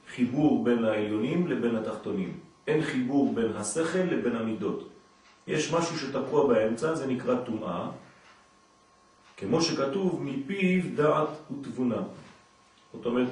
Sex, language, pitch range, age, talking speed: male, French, 115-155 Hz, 40-59, 115 wpm